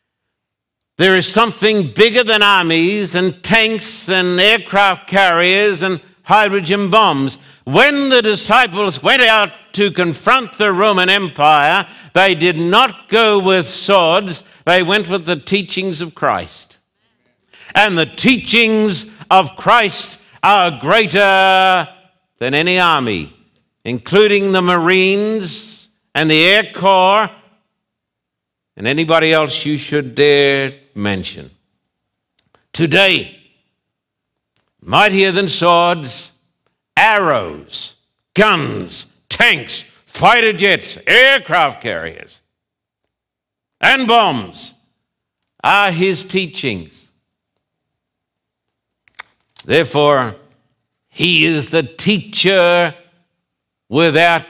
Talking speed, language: 90 wpm, English